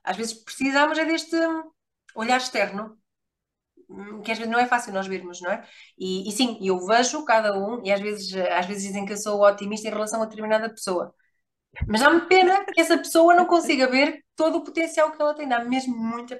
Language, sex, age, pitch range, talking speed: English, female, 20-39, 205-275 Hz, 210 wpm